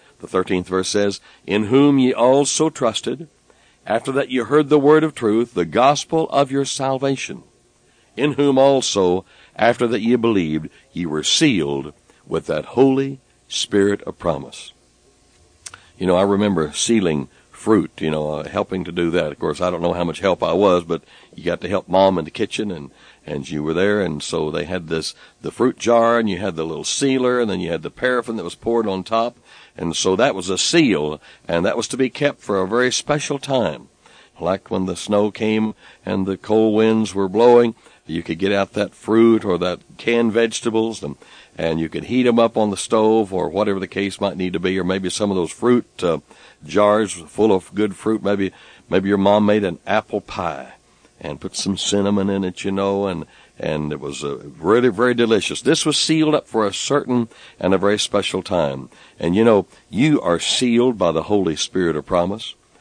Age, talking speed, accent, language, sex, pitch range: 60-79, 205 wpm, American, English, male, 90-125 Hz